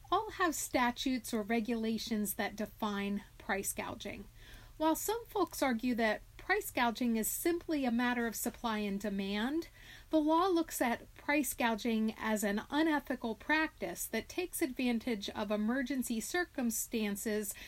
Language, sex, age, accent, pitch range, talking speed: English, female, 40-59, American, 215-275 Hz, 135 wpm